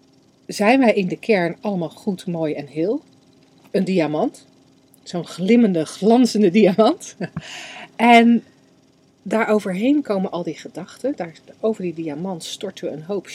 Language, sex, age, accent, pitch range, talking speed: Dutch, female, 40-59, Dutch, 155-215 Hz, 135 wpm